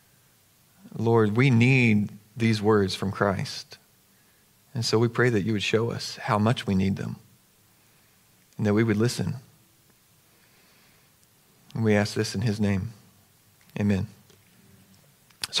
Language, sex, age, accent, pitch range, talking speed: English, male, 40-59, American, 120-165 Hz, 135 wpm